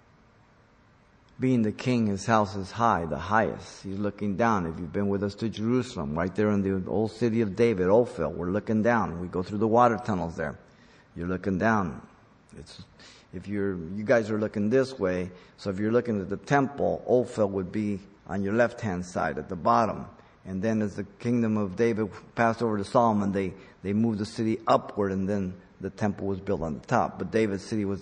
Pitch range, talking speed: 95-115 Hz, 210 wpm